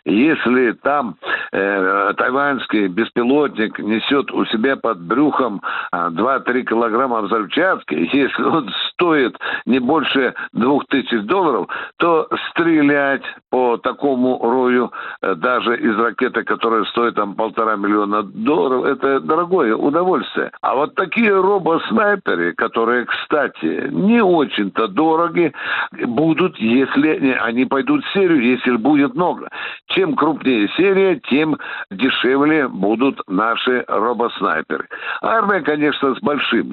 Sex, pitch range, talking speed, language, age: male, 115-160 Hz, 115 wpm, Russian, 60-79